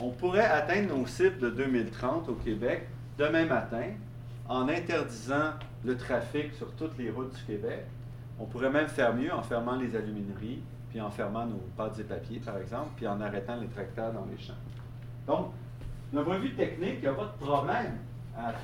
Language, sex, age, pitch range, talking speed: French, male, 40-59, 120-135 Hz, 195 wpm